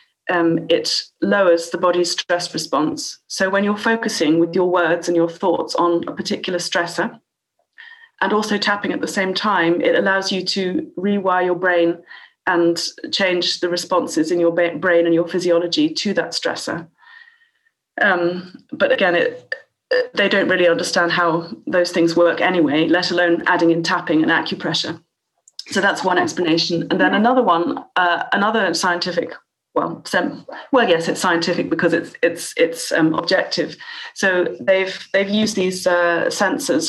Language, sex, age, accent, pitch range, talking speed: English, female, 30-49, British, 170-205 Hz, 160 wpm